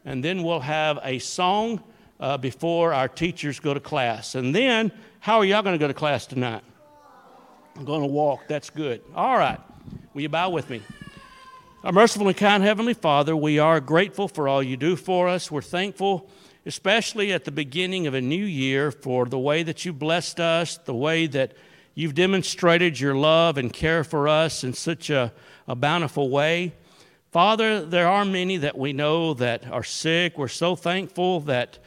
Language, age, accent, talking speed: English, 60-79, American, 190 wpm